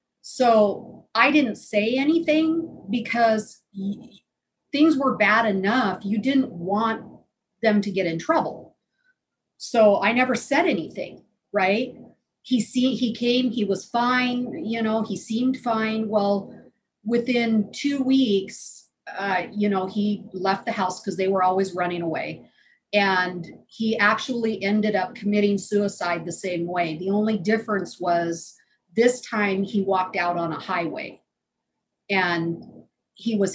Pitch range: 190-230 Hz